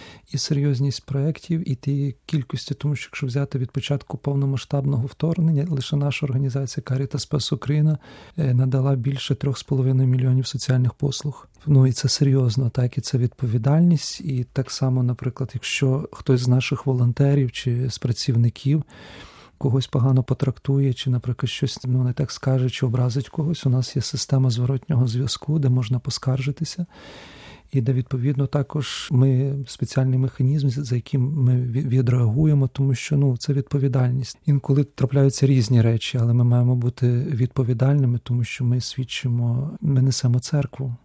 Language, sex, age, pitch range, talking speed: Ukrainian, male, 40-59, 125-140 Hz, 145 wpm